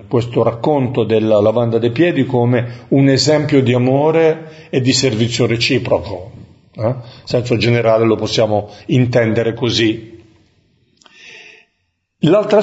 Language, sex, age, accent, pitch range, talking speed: Italian, male, 50-69, native, 110-135 Hz, 110 wpm